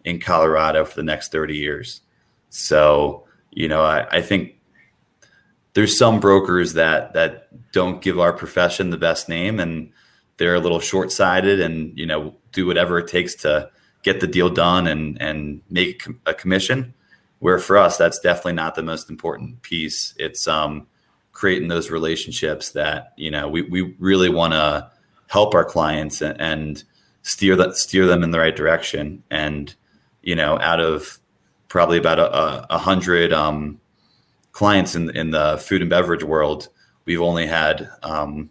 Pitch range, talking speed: 75-90 Hz, 165 wpm